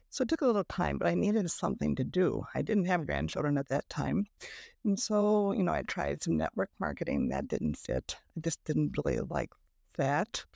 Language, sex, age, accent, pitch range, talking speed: English, female, 60-79, American, 170-230 Hz, 210 wpm